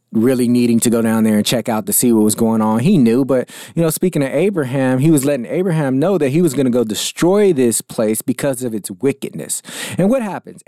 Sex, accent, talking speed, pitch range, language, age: male, American, 245 wpm, 115-140 Hz, English, 30-49